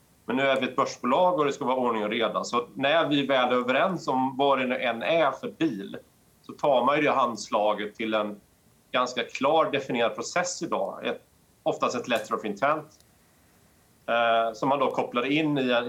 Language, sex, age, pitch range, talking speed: Swedish, male, 30-49, 105-130 Hz, 205 wpm